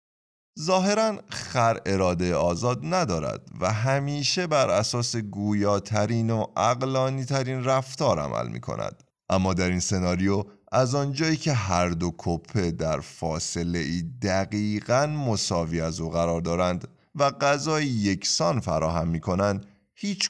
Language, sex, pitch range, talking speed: Persian, male, 85-130 Hz, 125 wpm